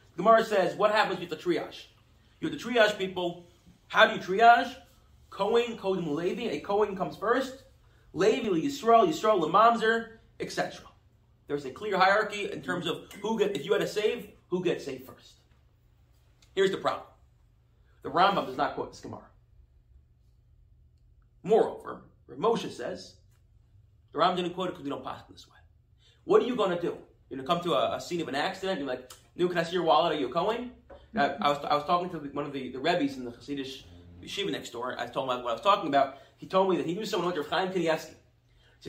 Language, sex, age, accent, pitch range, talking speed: English, male, 30-49, American, 145-220 Hz, 215 wpm